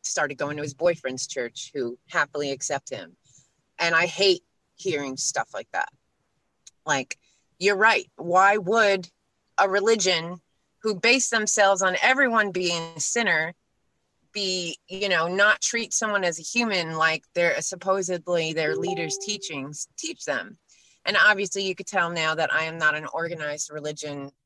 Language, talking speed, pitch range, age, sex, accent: English, 150 wpm, 155-190 Hz, 30-49, female, American